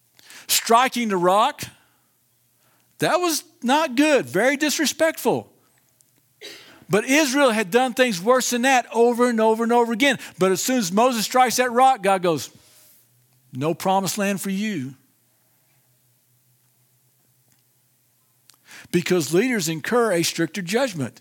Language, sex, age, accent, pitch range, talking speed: English, male, 50-69, American, 185-255 Hz, 125 wpm